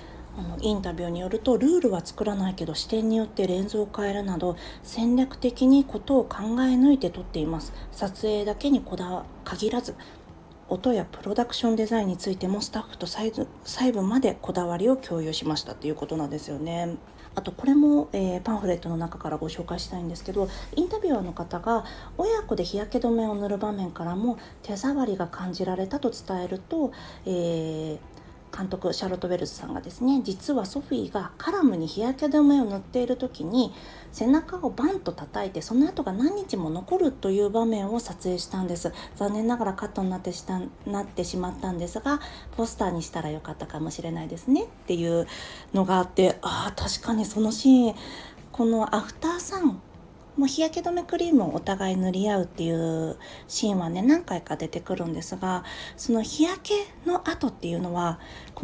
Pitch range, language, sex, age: 180-250 Hz, Japanese, female, 40-59